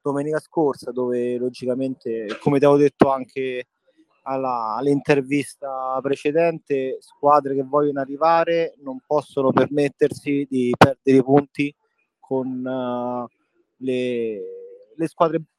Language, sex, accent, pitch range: Italian, male, native, 130-160 Hz